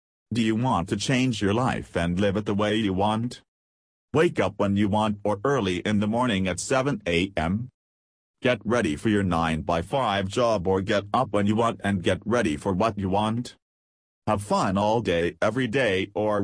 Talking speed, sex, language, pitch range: 200 wpm, male, English, 90-110 Hz